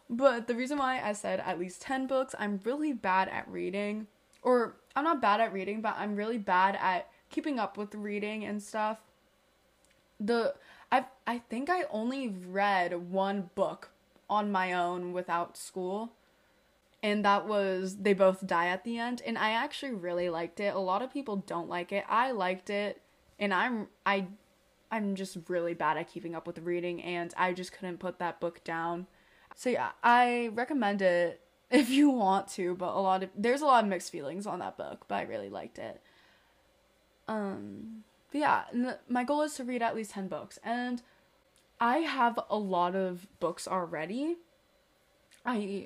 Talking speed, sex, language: 180 wpm, female, English